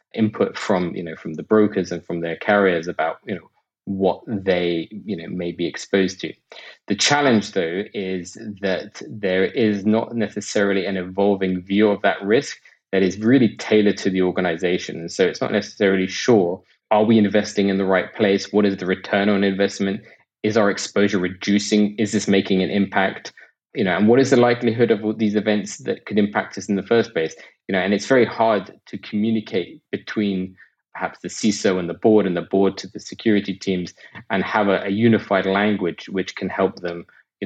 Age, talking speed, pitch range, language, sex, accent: 20-39, 195 wpm, 95-105 Hz, English, male, British